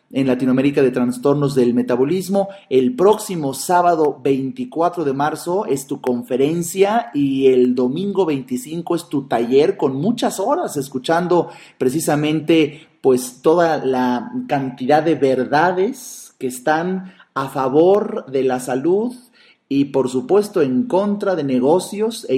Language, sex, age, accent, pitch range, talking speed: Spanish, male, 30-49, Mexican, 125-165 Hz, 130 wpm